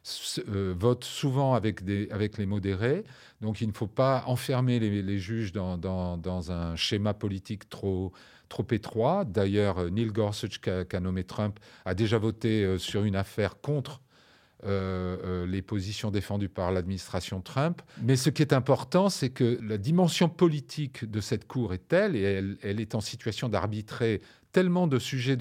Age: 40-59